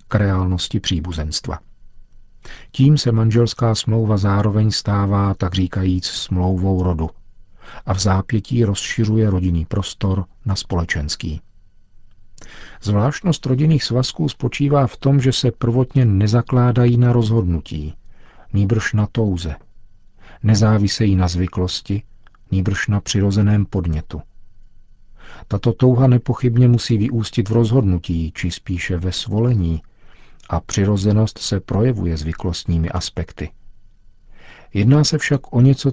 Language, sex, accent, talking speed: Czech, male, native, 110 wpm